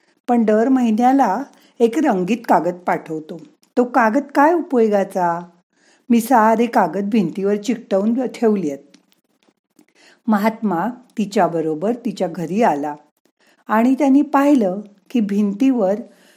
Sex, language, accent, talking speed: female, Marathi, native, 105 wpm